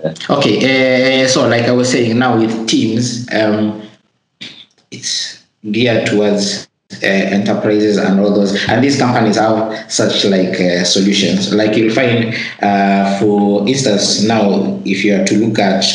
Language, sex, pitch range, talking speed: English, male, 100-125 Hz, 150 wpm